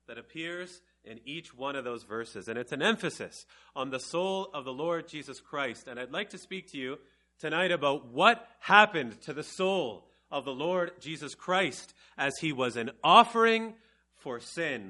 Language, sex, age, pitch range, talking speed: English, male, 30-49, 135-190 Hz, 185 wpm